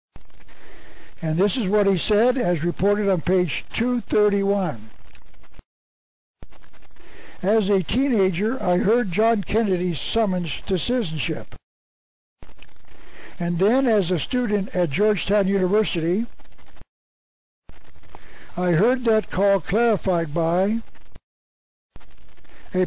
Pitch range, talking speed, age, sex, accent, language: 170-205 Hz, 95 wpm, 60-79, male, American, English